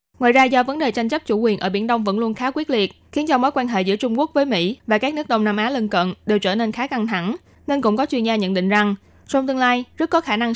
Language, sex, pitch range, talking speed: Vietnamese, female, 205-250 Hz, 320 wpm